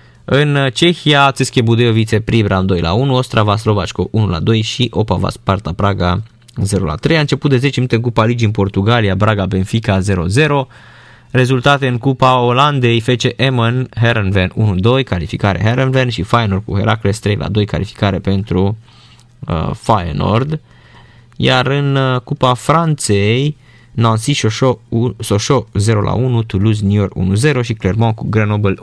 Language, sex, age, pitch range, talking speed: Romanian, male, 20-39, 100-125 Hz, 145 wpm